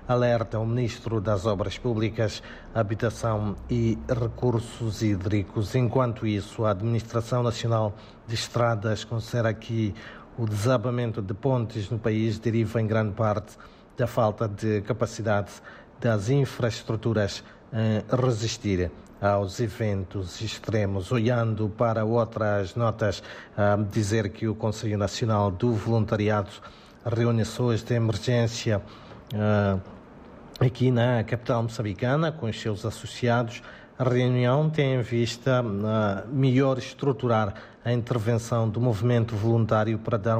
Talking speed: 115 wpm